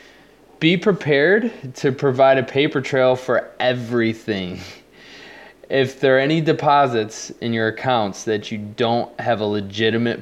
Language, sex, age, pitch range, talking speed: English, male, 20-39, 105-135 Hz, 135 wpm